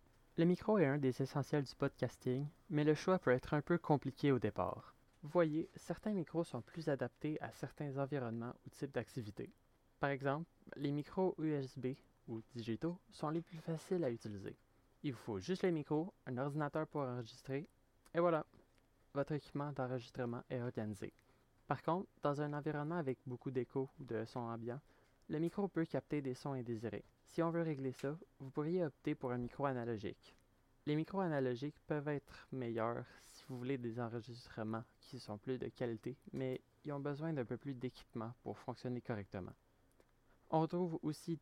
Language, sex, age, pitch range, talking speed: French, male, 20-39, 120-150 Hz, 175 wpm